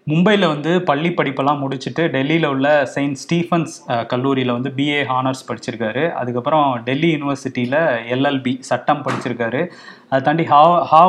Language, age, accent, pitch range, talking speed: Tamil, 20-39, native, 125-155 Hz, 125 wpm